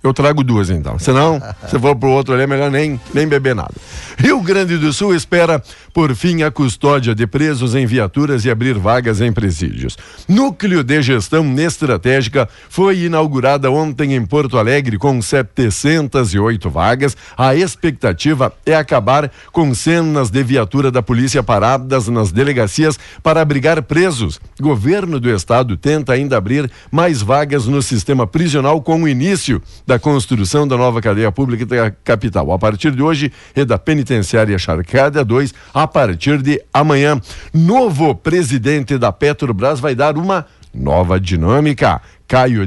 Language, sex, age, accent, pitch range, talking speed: Portuguese, male, 60-79, Brazilian, 115-150 Hz, 155 wpm